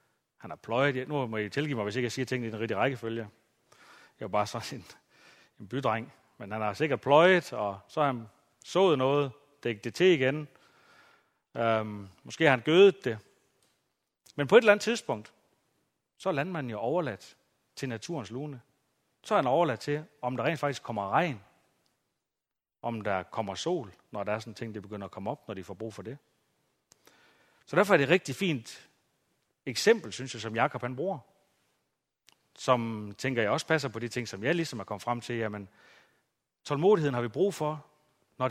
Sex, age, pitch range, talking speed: male, 40-59, 115-150 Hz, 195 wpm